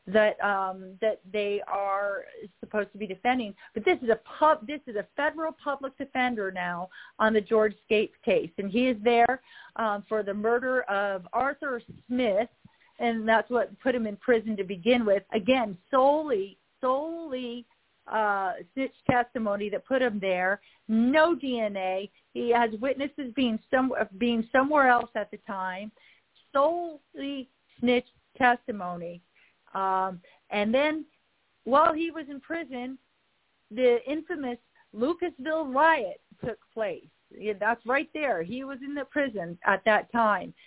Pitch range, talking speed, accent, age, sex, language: 200-260 Hz, 145 wpm, American, 40-59, female, English